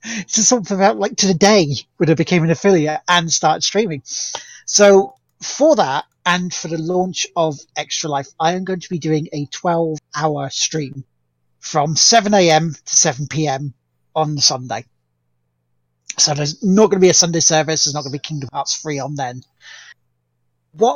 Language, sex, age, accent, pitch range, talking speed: English, male, 30-49, British, 130-180 Hz, 175 wpm